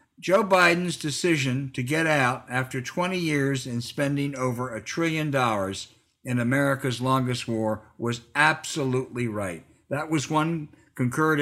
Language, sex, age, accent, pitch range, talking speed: English, male, 60-79, American, 130-175 Hz, 135 wpm